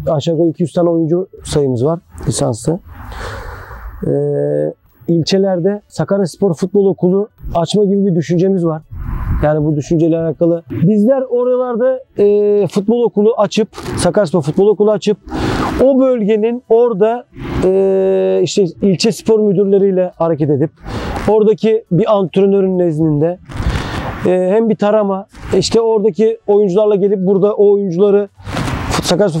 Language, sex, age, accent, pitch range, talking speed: Turkish, male, 40-59, native, 170-205 Hz, 120 wpm